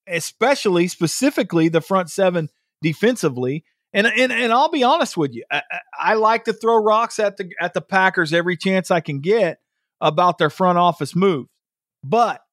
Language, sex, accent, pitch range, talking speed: English, male, American, 150-195 Hz, 175 wpm